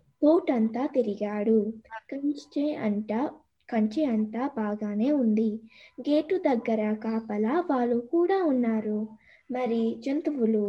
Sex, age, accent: female, 20-39, native